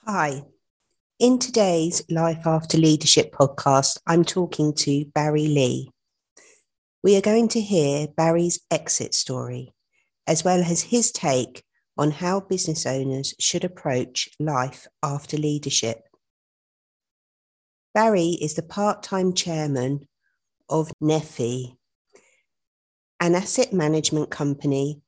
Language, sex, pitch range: English, female, 140-175 Hz